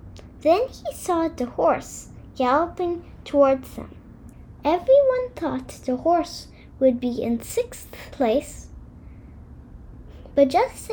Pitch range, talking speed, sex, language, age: 265-345 Hz, 105 wpm, female, English, 10-29